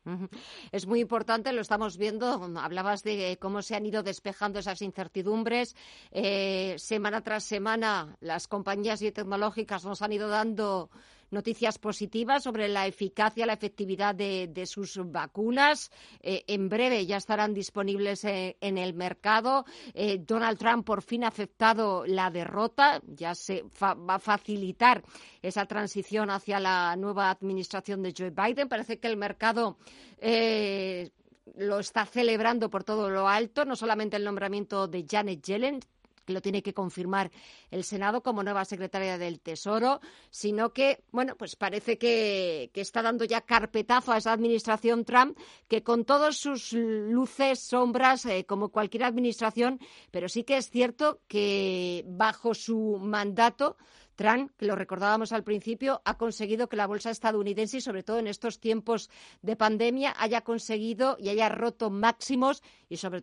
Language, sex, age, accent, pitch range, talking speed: Spanish, female, 50-69, Spanish, 195-230 Hz, 155 wpm